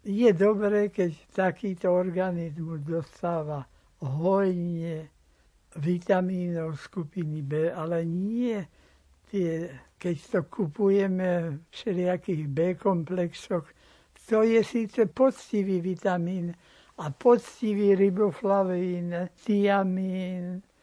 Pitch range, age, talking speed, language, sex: 165-200 Hz, 60-79, 85 wpm, Slovak, male